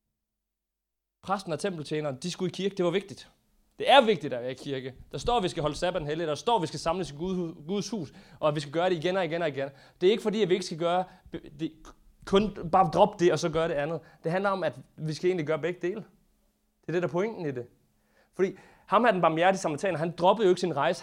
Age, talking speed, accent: 30-49, 270 wpm, native